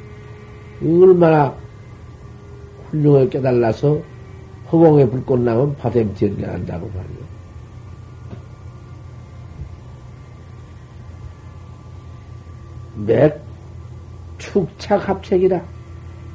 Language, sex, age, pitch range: Korean, male, 50-69, 110-150 Hz